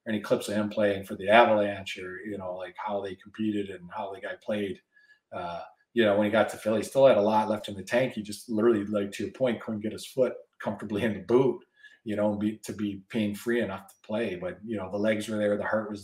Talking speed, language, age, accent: 275 wpm, English, 40-59, American